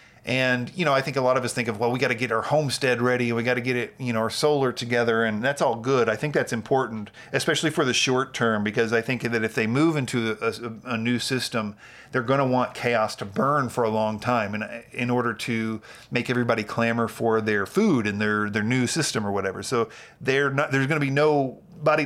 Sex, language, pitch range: male, English, 115-140 Hz